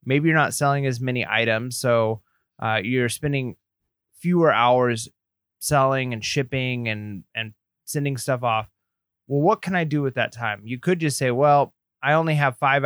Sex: male